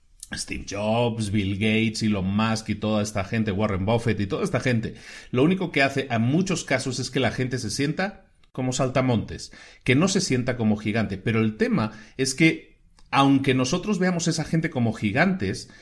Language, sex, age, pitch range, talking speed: Spanish, male, 40-59, 110-145 Hz, 185 wpm